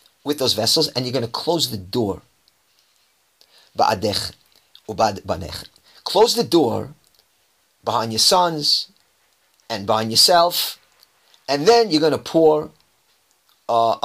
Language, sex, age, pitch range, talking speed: English, male, 40-59, 115-155 Hz, 110 wpm